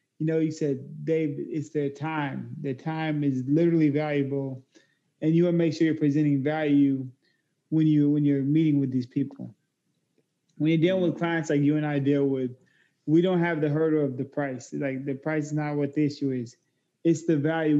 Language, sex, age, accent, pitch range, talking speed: English, male, 20-39, American, 145-165 Hz, 210 wpm